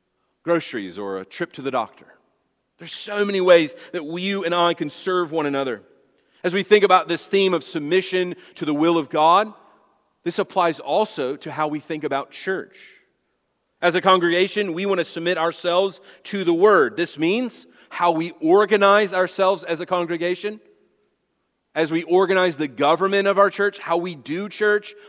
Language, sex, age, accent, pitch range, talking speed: English, male, 30-49, American, 165-200 Hz, 175 wpm